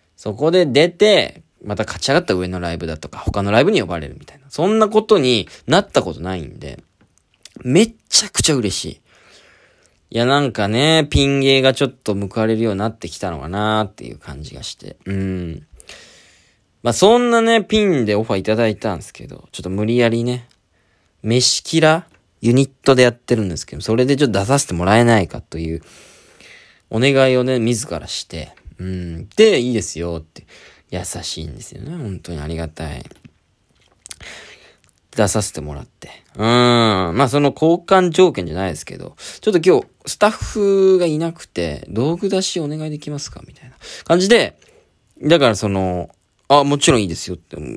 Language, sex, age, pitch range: Japanese, male, 20-39, 90-150 Hz